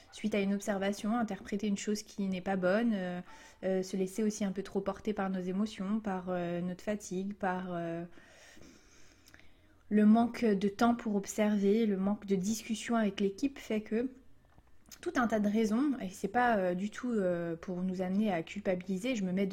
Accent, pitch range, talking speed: French, 185-225 Hz, 190 wpm